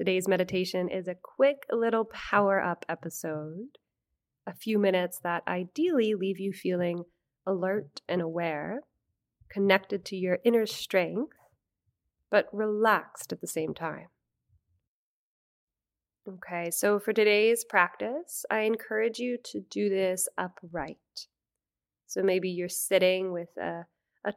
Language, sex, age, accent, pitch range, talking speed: English, female, 20-39, American, 175-215 Hz, 120 wpm